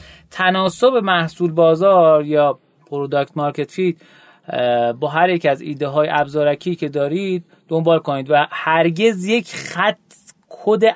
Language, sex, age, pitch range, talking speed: Persian, male, 30-49, 130-170 Hz, 125 wpm